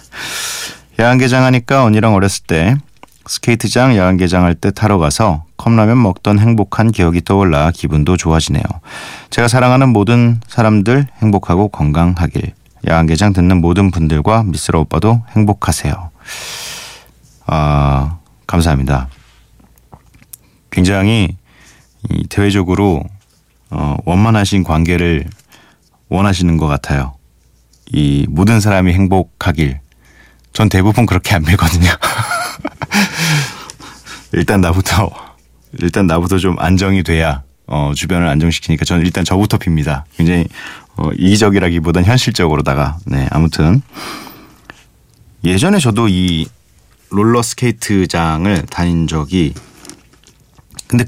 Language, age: Korean, 30-49